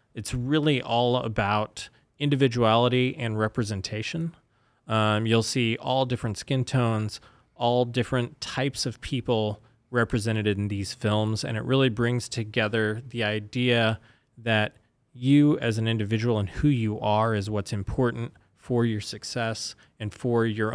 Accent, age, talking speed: American, 20-39, 140 wpm